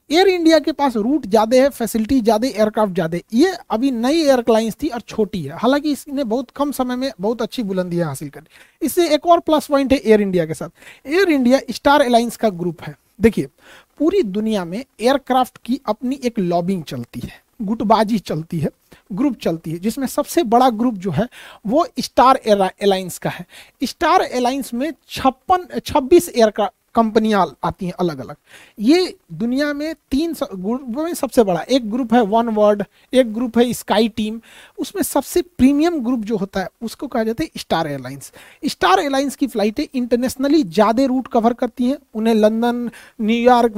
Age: 50-69